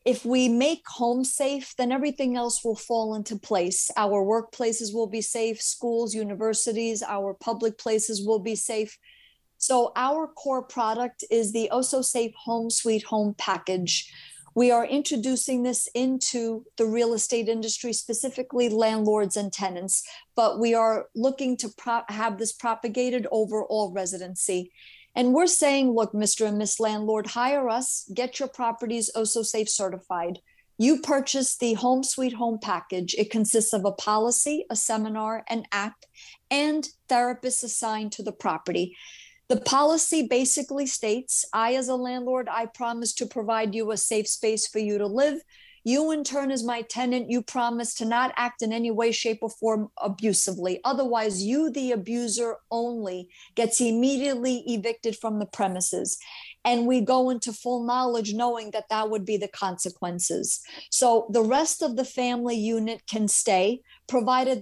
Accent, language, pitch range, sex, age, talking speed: American, English, 215-250 Hz, female, 50-69, 160 wpm